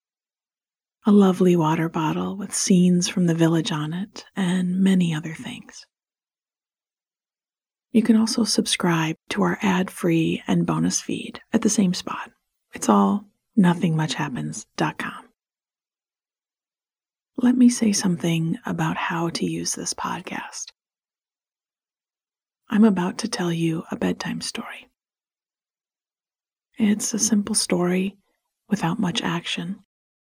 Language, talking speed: English, 115 wpm